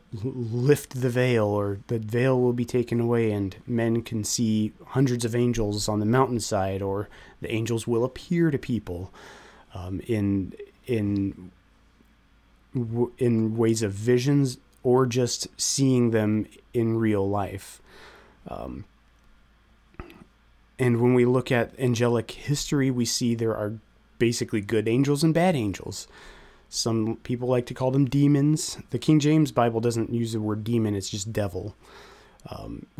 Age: 30-49